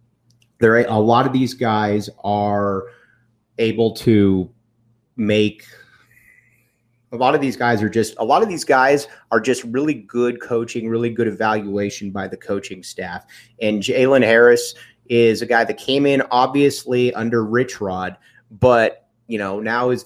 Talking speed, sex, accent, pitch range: 155 wpm, male, American, 110-125 Hz